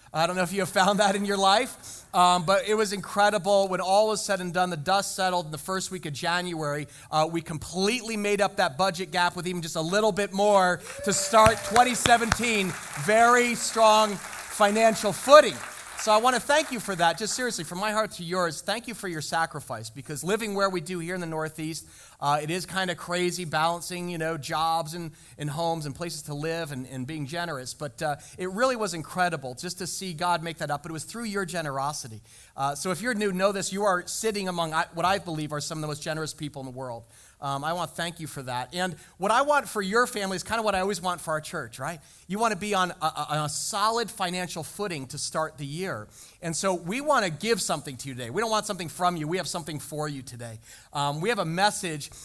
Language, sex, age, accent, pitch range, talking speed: English, male, 30-49, American, 155-205 Hz, 245 wpm